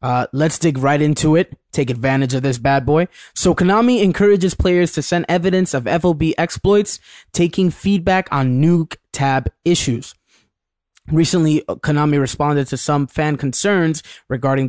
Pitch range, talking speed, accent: 135-165 Hz, 145 wpm, American